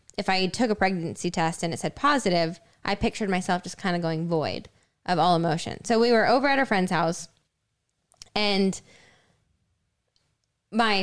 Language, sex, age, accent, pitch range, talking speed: English, female, 10-29, American, 170-210 Hz, 170 wpm